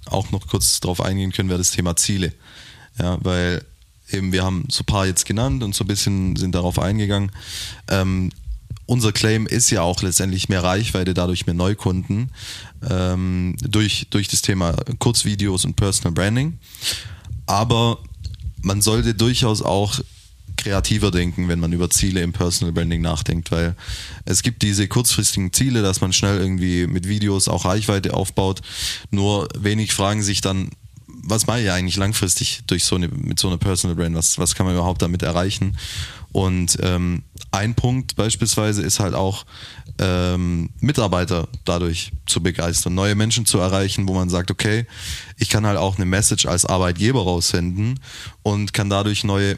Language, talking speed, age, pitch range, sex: German, 160 wpm, 20-39, 90-110 Hz, male